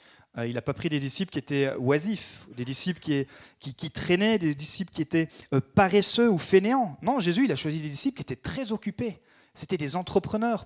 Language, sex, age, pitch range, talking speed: French, male, 30-49, 140-200 Hz, 205 wpm